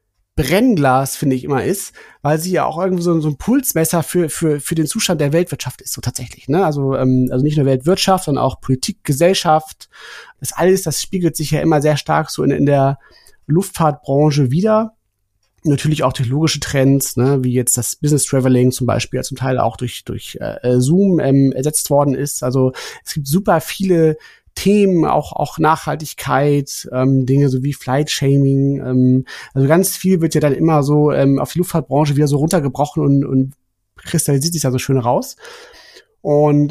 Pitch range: 130-165 Hz